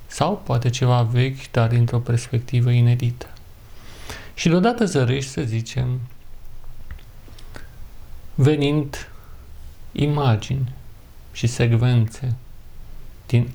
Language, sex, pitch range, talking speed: Romanian, male, 110-135 Hz, 80 wpm